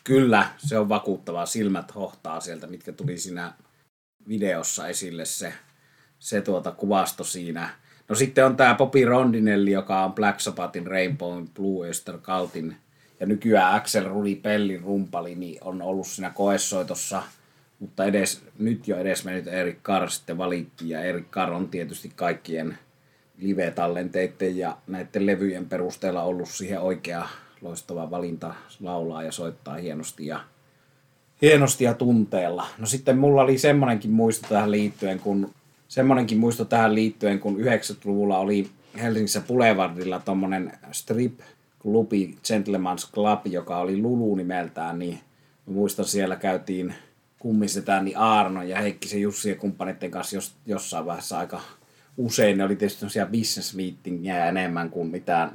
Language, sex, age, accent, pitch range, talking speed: Finnish, male, 30-49, native, 90-110 Hz, 140 wpm